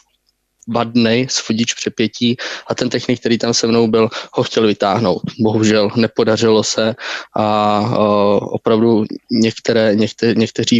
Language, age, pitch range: Czech, 20-39, 110-115 Hz